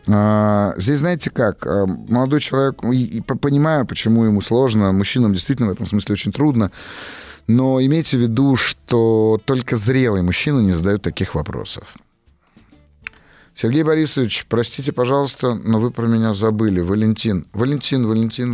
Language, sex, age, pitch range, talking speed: Russian, male, 30-49, 105-130 Hz, 135 wpm